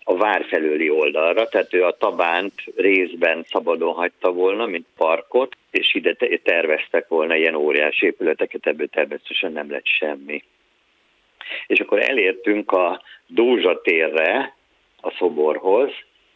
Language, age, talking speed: Hungarian, 50-69, 120 wpm